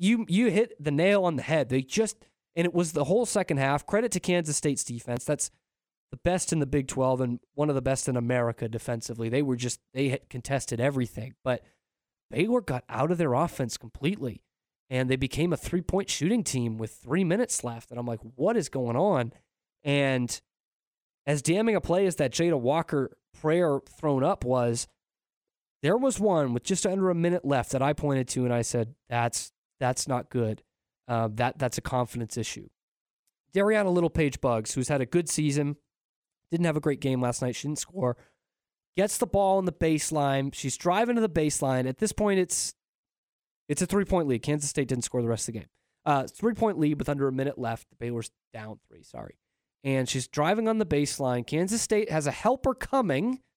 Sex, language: male, English